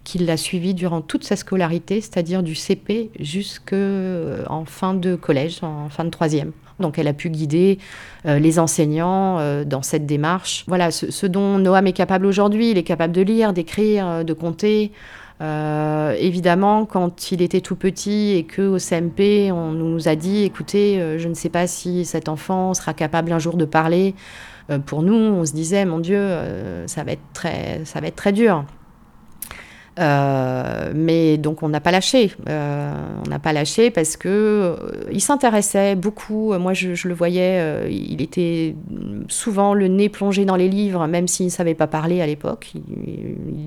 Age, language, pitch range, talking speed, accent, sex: 30-49, French, 165-200 Hz, 185 wpm, French, female